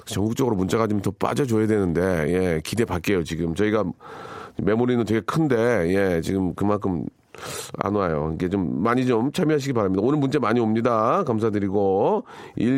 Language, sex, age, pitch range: Korean, male, 40-59, 105-160 Hz